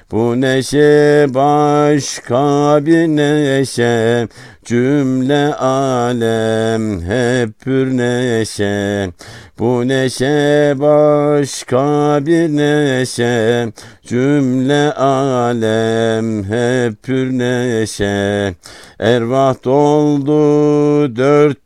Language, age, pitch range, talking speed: Turkish, 60-79, 115-145 Hz, 60 wpm